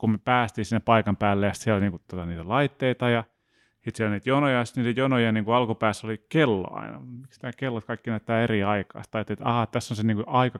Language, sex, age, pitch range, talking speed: Finnish, male, 30-49, 105-120 Hz, 230 wpm